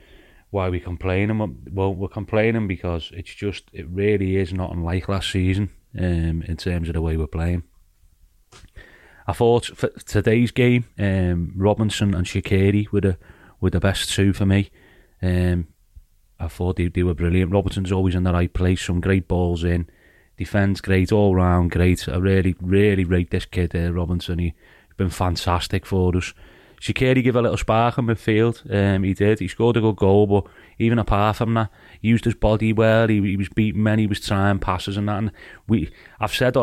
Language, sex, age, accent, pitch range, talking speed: English, male, 30-49, British, 90-110 Hz, 195 wpm